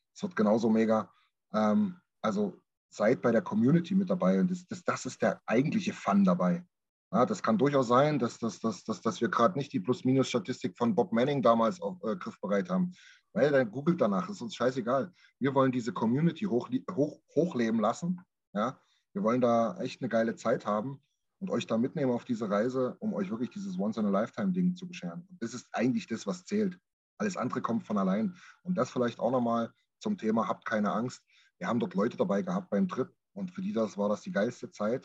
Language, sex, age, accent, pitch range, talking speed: German, male, 30-49, German, 115-190 Hz, 210 wpm